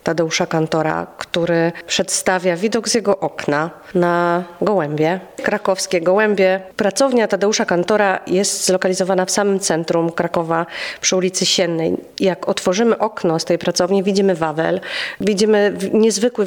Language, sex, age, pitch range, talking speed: Polish, female, 30-49, 170-195 Hz, 125 wpm